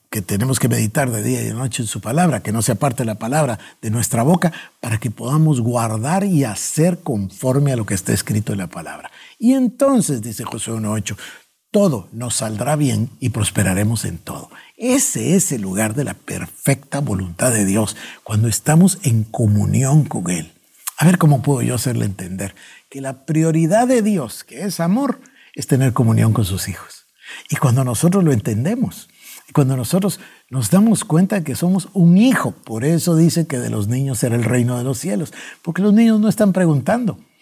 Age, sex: 60-79, male